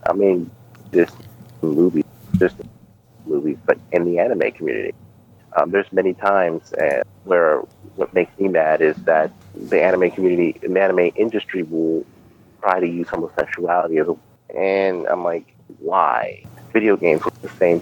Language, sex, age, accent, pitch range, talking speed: English, male, 30-49, American, 85-115 Hz, 150 wpm